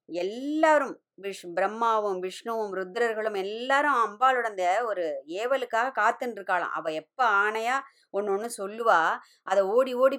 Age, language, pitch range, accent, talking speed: 20-39, Tamil, 180-235 Hz, native, 120 wpm